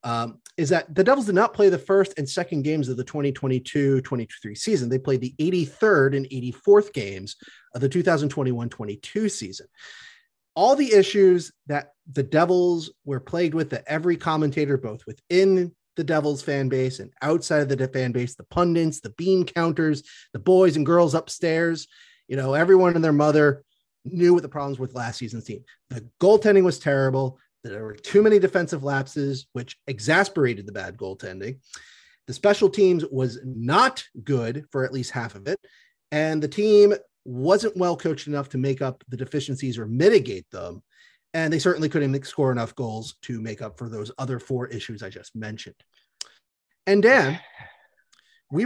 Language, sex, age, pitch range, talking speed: English, male, 30-49, 130-180 Hz, 175 wpm